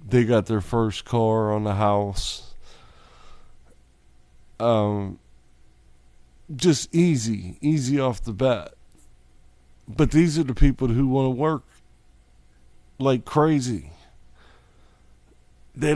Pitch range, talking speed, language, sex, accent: 90-130 Hz, 100 wpm, English, male, American